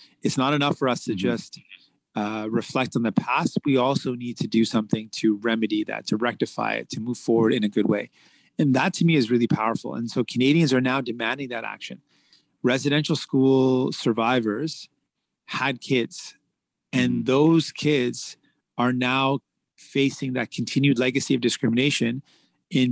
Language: English